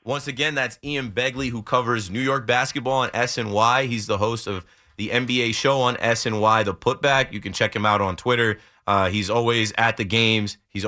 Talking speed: 205 wpm